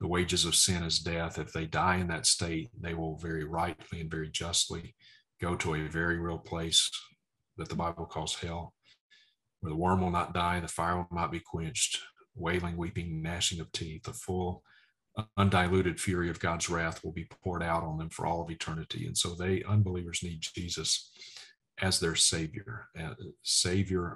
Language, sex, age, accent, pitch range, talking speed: English, male, 40-59, American, 85-95 Hz, 185 wpm